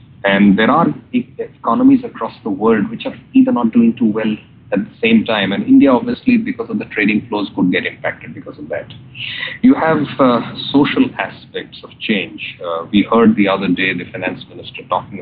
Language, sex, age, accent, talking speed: English, male, 40-59, Indian, 195 wpm